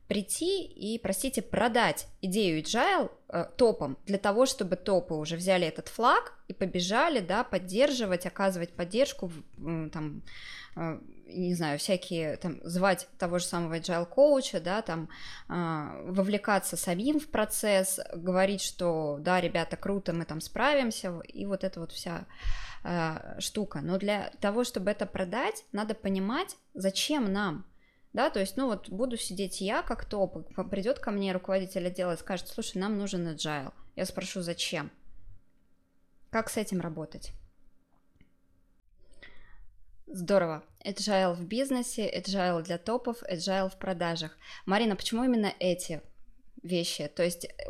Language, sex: Russian, female